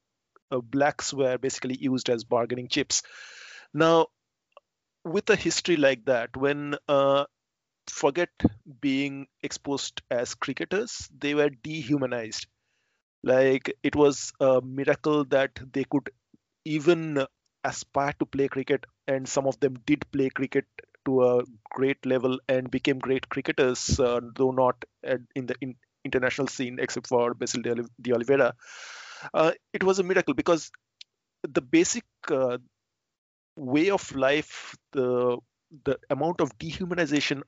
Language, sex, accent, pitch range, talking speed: English, male, Indian, 125-150 Hz, 130 wpm